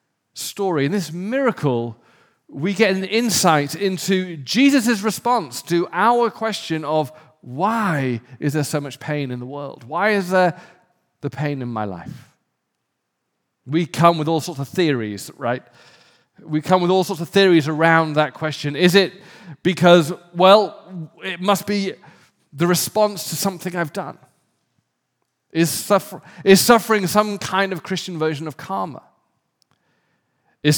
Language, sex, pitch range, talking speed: English, male, 140-195 Hz, 145 wpm